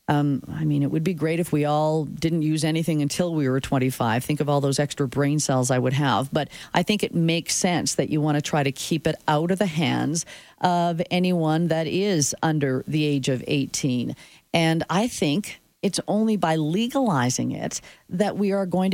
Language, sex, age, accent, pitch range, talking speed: English, female, 40-59, American, 145-195 Hz, 210 wpm